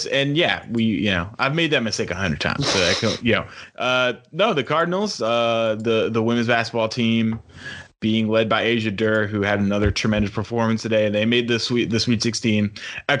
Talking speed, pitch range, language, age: 210 wpm, 105-130 Hz, English, 20-39